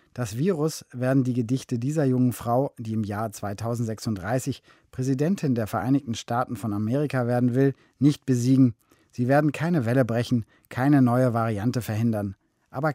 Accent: German